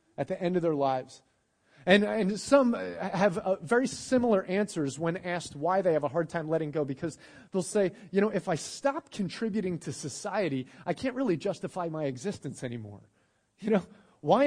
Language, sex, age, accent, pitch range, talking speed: English, male, 30-49, American, 160-205 Hz, 185 wpm